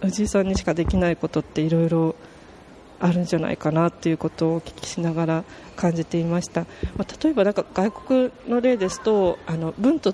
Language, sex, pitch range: Japanese, female, 160-190 Hz